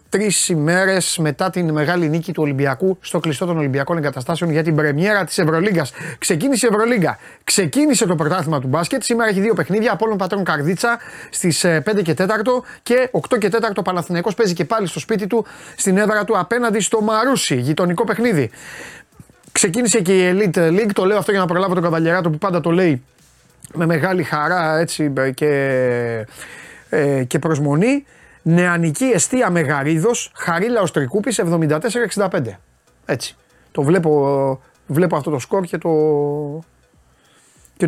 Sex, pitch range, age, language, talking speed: male, 155-215 Hz, 30-49, Greek, 155 wpm